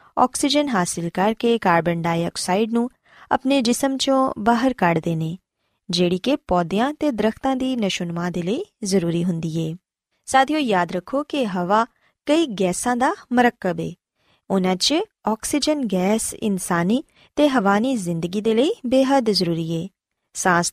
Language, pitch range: Punjabi, 180-270 Hz